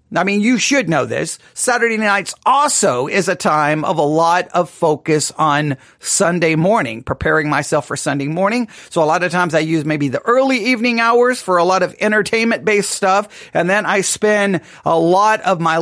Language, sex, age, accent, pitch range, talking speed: English, male, 40-59, American, 170-235 Hz, 195 wpm